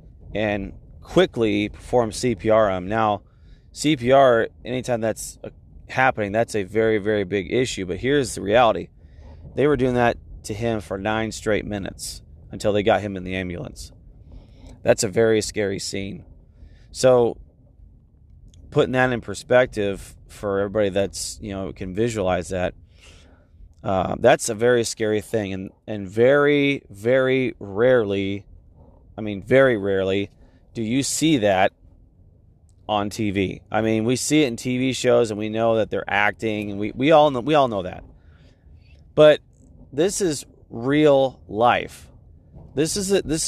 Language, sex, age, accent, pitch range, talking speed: English, male, 30-49, American, 90-125 Hz, 150 wpm